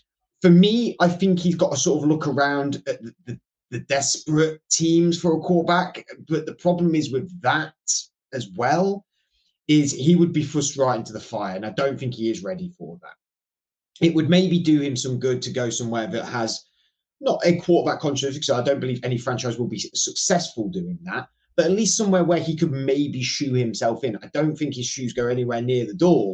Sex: male